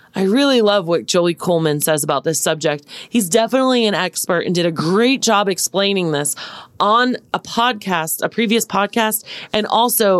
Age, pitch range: 30-49, 165-215 Hz